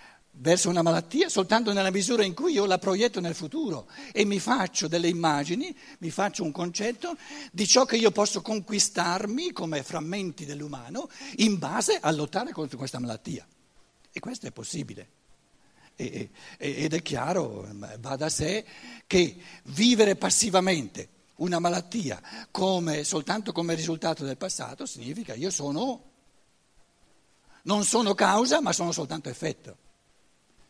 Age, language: 60-79, Italian